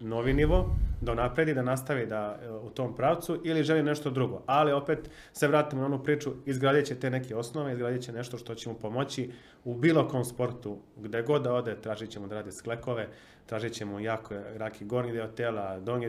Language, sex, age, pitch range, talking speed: Croatian, male, 30-49, 105-125 Hz, 195 wpm